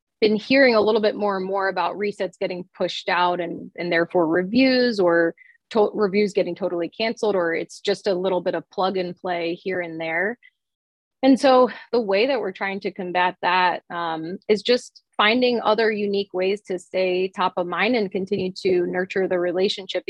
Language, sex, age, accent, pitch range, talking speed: English, female, 20-39, American, 180-210 Hz, 190 wpm